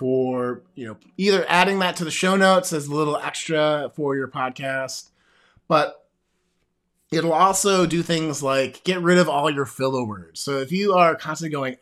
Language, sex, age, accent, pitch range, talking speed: English, male, 30-49, American, 130-175 Hz, 185 wpm